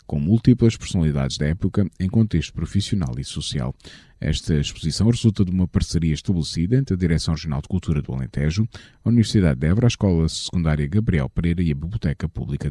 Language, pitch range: Portuguese, 80-115 Hz